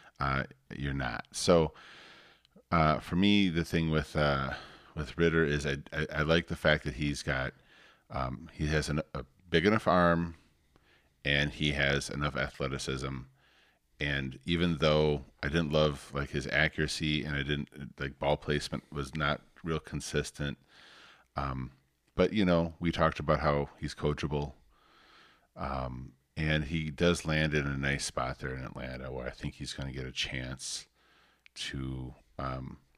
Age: 40-59